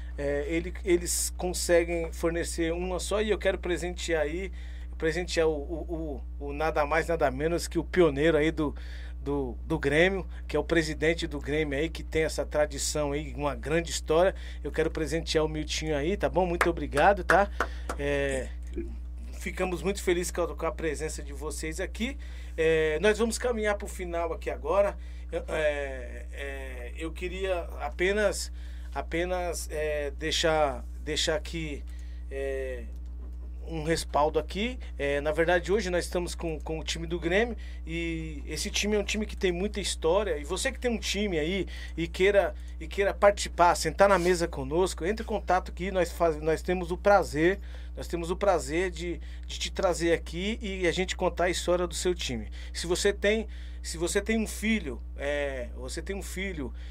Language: Portuguese